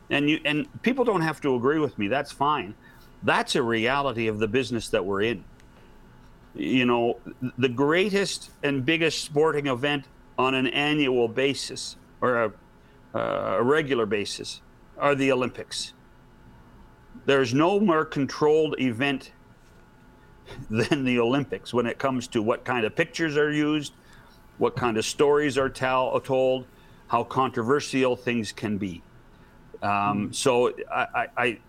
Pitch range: 115-145 Hz